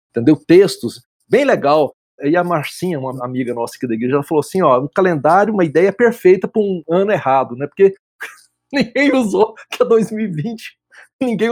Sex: male